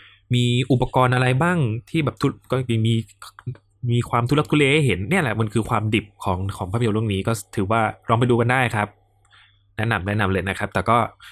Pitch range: 100-125 Hz